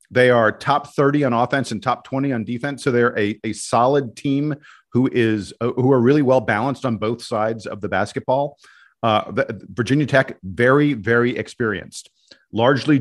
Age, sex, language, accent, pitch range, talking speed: 40-59, male, English, American, 110-135 Hz, 175 wpm